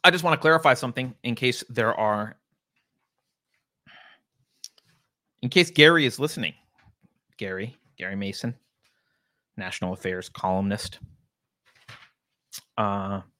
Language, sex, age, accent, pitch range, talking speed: English, male, 30-49, American, 100-130 Hz, 100 wpm